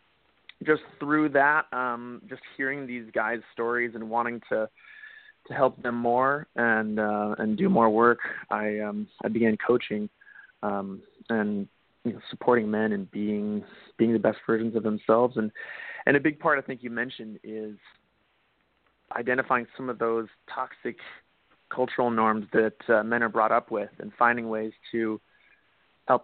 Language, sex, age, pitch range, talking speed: English, male, 30-49, 105-120 Hz, 160 wpm